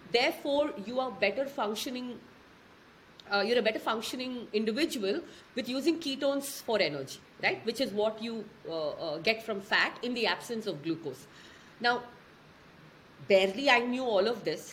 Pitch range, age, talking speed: 200-270 Hz, 40-59, 155 wpm